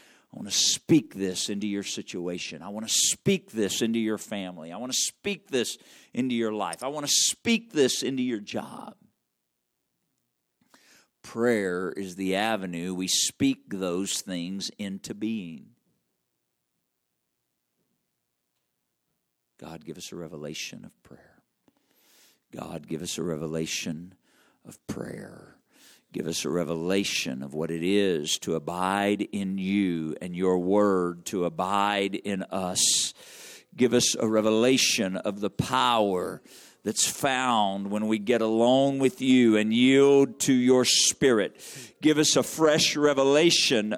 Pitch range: 95-150 Hz